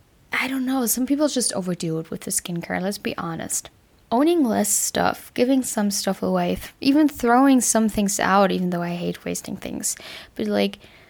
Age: 10-29